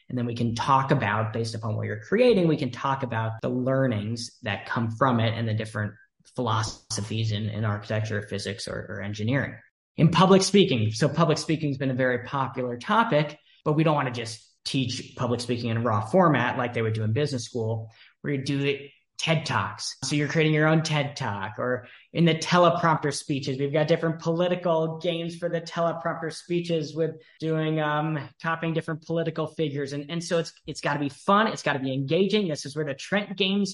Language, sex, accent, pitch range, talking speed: English, male, American, 125-160 Hz, 210 wpm